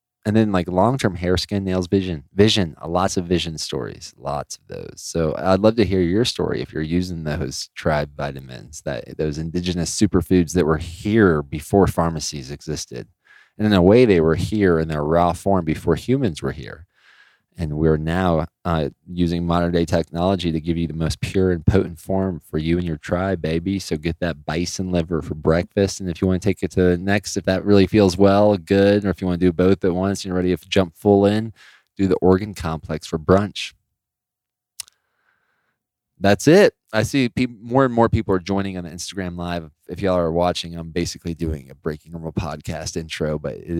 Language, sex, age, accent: English, male, 20-39, American